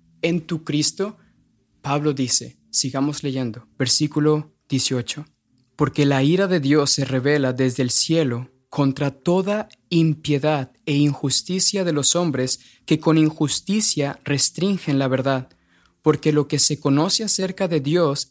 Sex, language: male, English